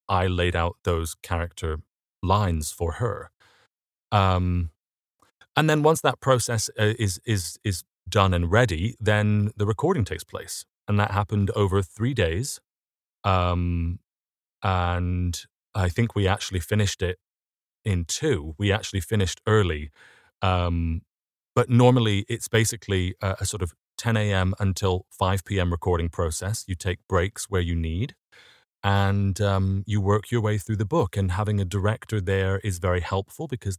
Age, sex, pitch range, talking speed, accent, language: 30-49, male, 90-105 Hz, 150 wpm, British, English